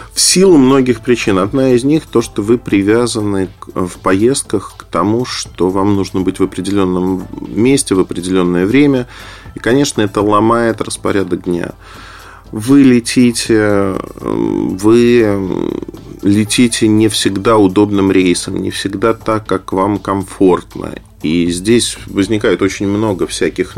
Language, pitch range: Russian, 95-120 Hz